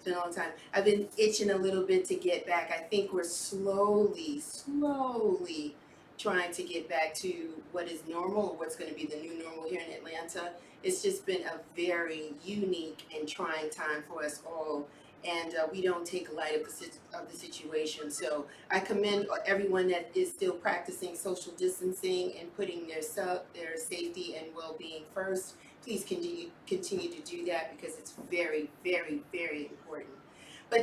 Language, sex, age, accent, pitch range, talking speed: English, female, 30-49, American, 170-215 Hz, 180 wpm